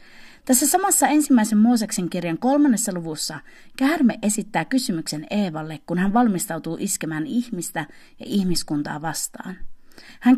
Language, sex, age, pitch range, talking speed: Finnish, female, 30-49, 170-260 Hz, 115 wpm